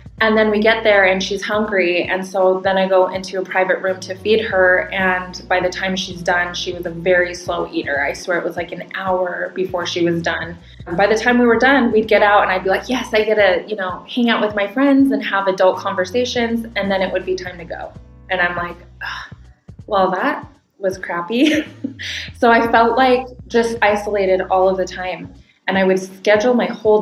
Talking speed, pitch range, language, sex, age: 225 wpm, 185-215 Hz, English, female, 20-39